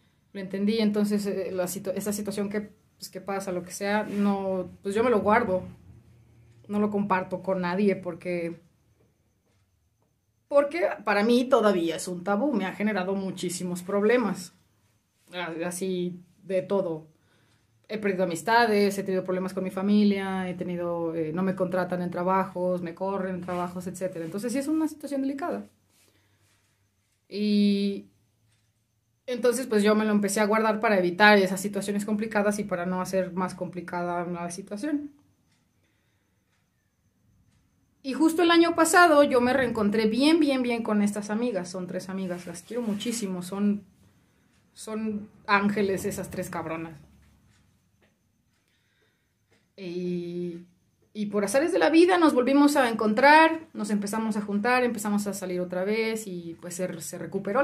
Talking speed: 150 wpm